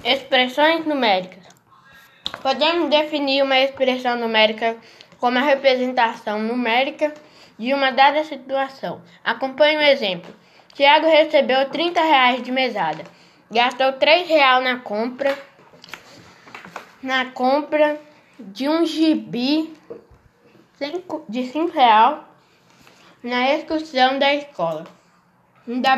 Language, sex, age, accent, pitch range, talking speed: Portuguese, female, 10-29, Brazilian, 230-285 Hz, 95 wpm